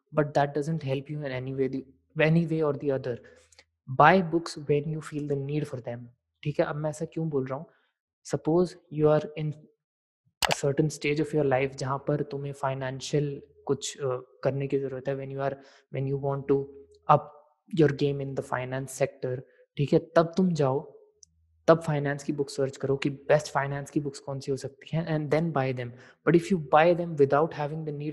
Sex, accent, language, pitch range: male, native, Hindi, 140-160 Hz